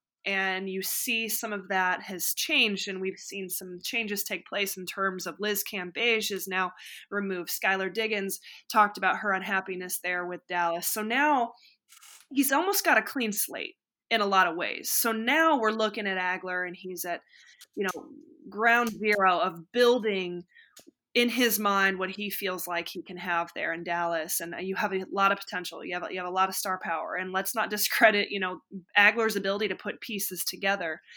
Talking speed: 195 wpm